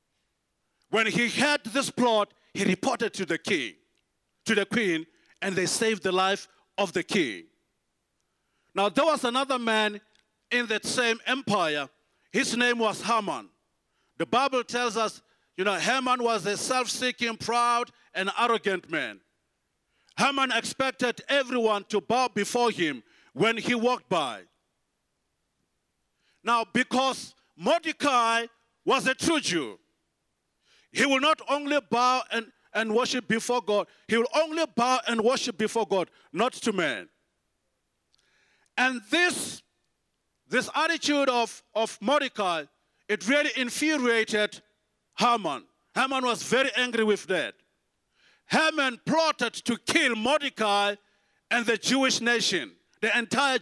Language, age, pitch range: English, 50-69, 220-265 Hz